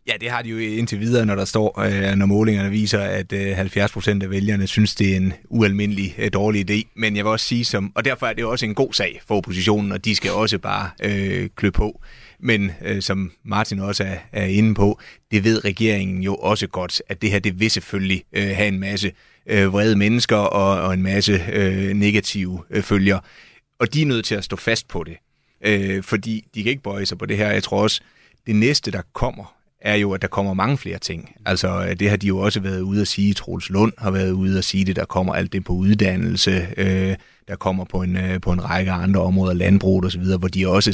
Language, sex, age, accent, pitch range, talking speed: Danish, male, 30-49, native, 95-105 Hz, 230 wpm